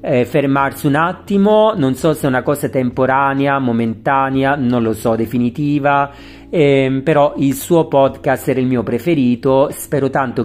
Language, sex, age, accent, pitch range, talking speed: Italian, male, 40-59, native, 120-150 Hz, 155 wpm